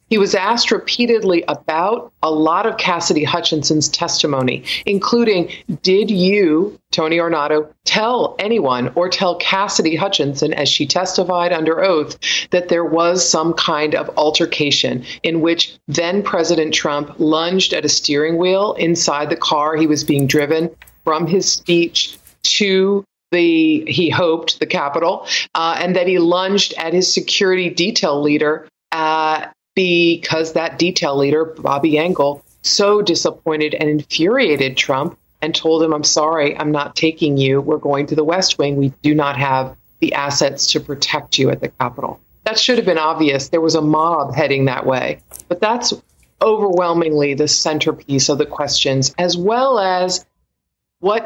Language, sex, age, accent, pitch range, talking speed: English, female, 40-59, American, 150-180 Hz, 155 wpm